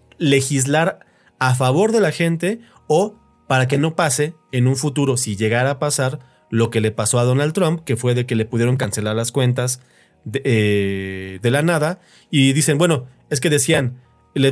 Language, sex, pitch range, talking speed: Spanish, male, 125-160 Hz, 190 wpm